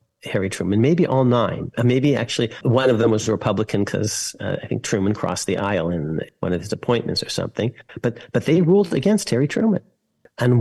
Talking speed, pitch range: 205 wpm, 105-130 Hz